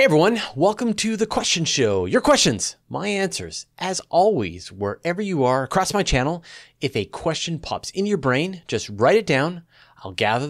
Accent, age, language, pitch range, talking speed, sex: American, 30-49, English, 105-160 Hz, 185 wpm, male